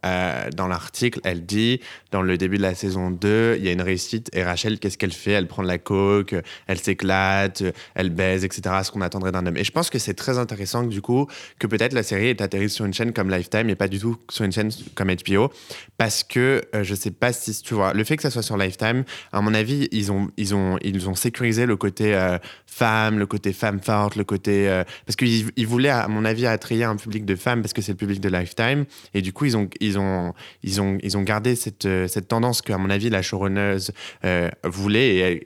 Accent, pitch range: French, 95-115 Hz